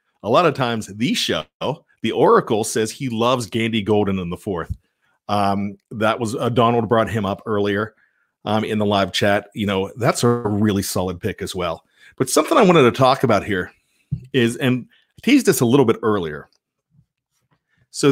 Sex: male